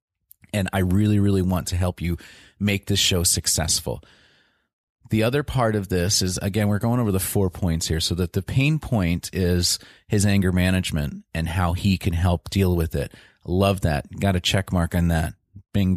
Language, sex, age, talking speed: English, male, 30-49, 195 wpm